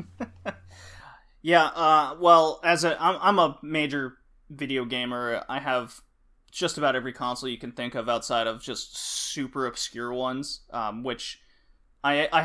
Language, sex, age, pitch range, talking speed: English, male, 20-39, 125-140 Hz, 150 wpm